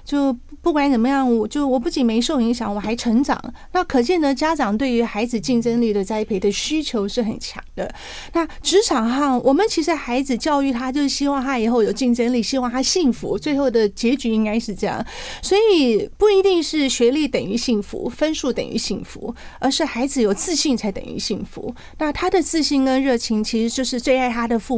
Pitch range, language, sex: 225-295 Hz, Chinese, female